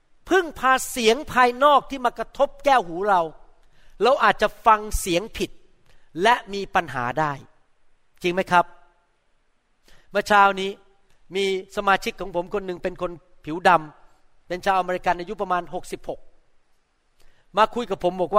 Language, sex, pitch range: Thai, male, 185-280 Hz